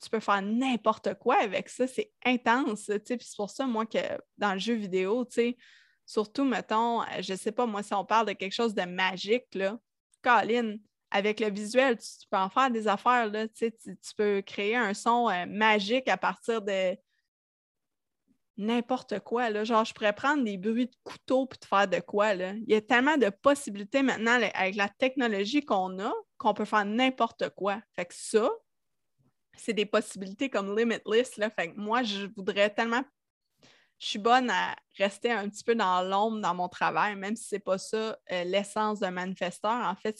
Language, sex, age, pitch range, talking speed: French, female, 20-39, 200-235 Hz, 195 wpm